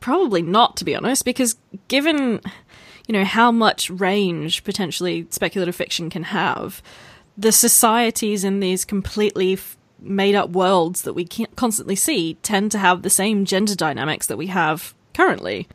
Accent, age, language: Australian, 20-39, English